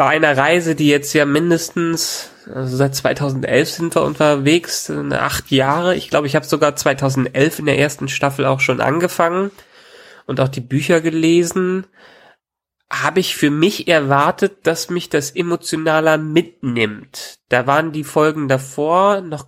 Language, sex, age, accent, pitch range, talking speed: German, male, 30-49, German, 135-170 Hz, 150 wpm